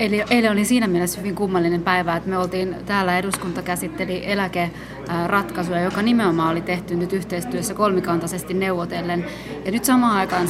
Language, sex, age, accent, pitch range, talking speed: Finnish, female, 30-49, native, 180-210 Hz, 150 wpm